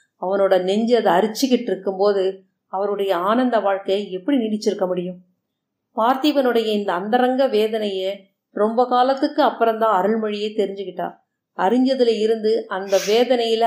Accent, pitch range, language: native, 205-255 Hz, Tamil